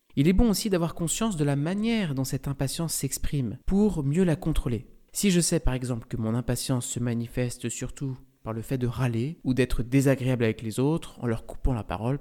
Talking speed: 215 wpm